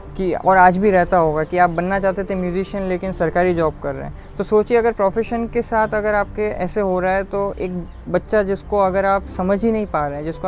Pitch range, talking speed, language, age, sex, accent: 180-215 Hz, 245 wpm, Hindi, 20-39, female, native